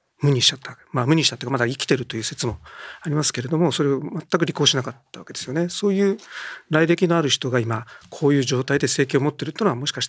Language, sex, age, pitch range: Japanese, male, 40-59, 130-180 Hz